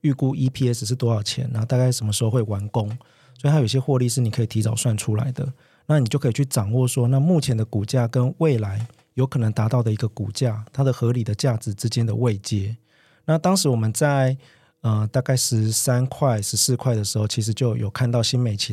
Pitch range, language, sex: 110-130 Hz, Chinese, male